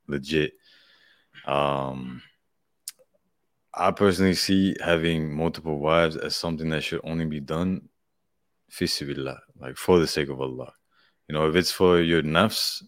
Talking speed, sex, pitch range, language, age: 130 wpm, male, 75-85 Hz, English, 20-39